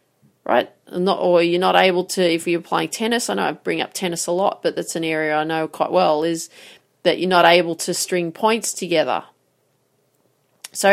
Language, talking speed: English, 200 wpm